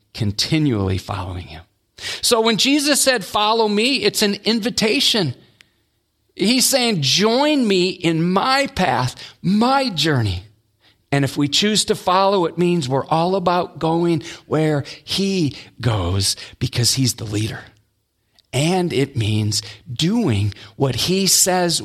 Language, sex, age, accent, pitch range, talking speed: English, male, 40-59, American, 115-175 Hz, 130 wpm